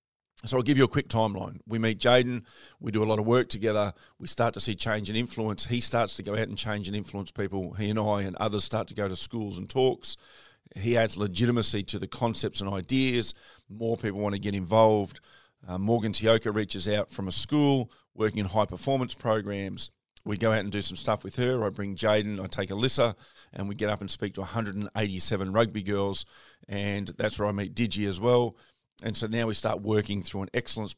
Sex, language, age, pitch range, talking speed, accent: male, English, 40-59, 100-115 Hz, 225 wpm, Australian